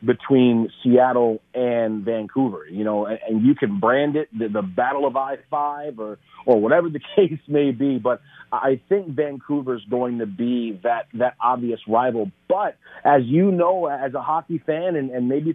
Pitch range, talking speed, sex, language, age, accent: 125-155 Hz, 180 wpm, male, English, 40-59, American